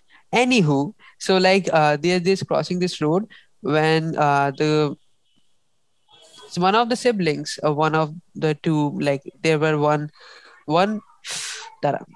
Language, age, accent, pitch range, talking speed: English, 20-39, Indian, 160-205 Hz, 130 wpm